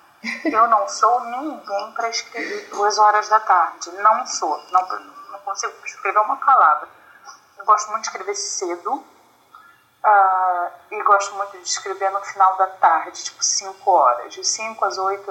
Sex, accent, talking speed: female, Brazilian, 160 wpm